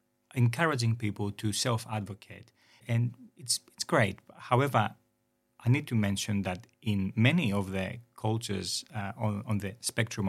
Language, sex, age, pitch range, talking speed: English, male, 40-59, 100-120 Hz, 140 wpm